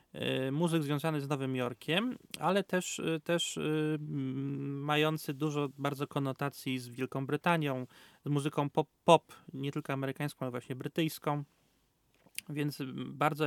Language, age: Polish, 30-49